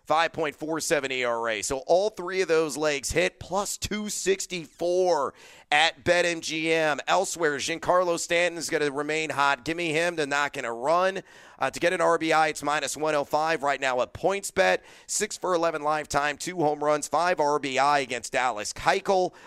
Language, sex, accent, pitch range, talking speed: English, male, American, 135-175 Hz, 155 wpm